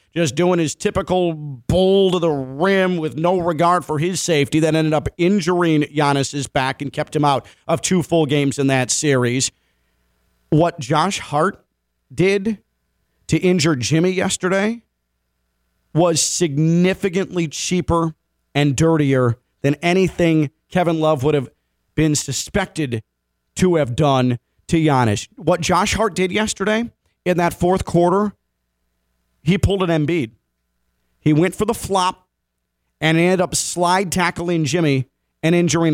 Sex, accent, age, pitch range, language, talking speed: male, American, 40-59, 125-185 Hz, English, 140 wpm